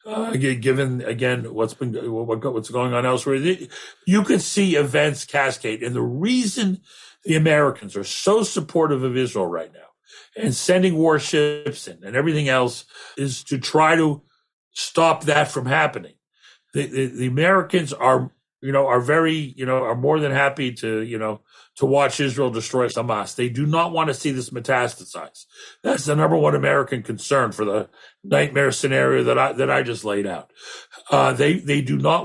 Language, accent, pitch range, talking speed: English, American, 125-155 Hz, 175 wpm